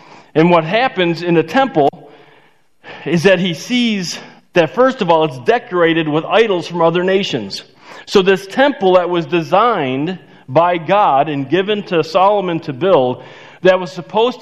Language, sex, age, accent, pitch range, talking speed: English, male, 40-59, American, 150-200 Hz, 160 wpm